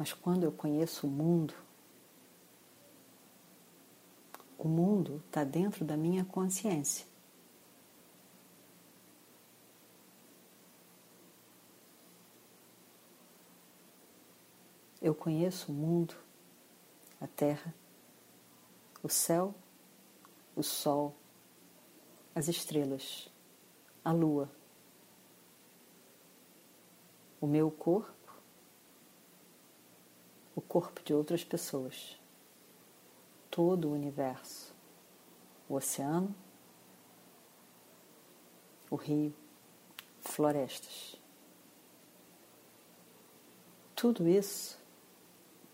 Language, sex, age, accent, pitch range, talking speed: Portuguese, female, 50-69, Brazilian, 145-175 Hz, 60 wpm